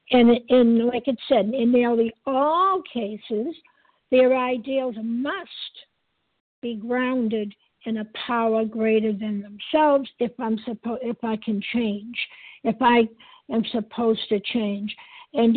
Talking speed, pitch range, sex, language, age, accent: 130 wpm, 225-275 Hz, female, English, 60-79, American